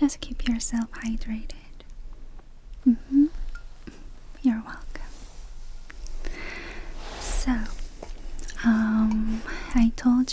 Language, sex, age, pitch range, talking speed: English, female, 20-39, 225-255 Hz, 70 wpm